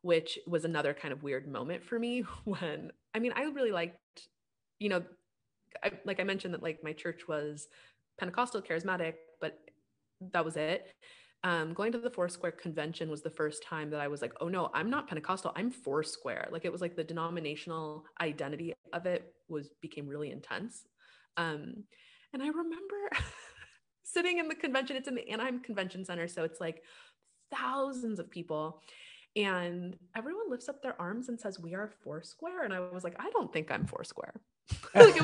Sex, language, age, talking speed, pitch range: female, English, 20-39, 185 wpm, 155-230 Hz